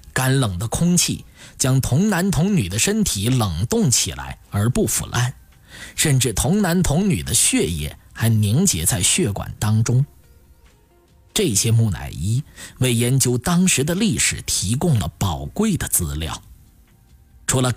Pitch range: 95-145 Hz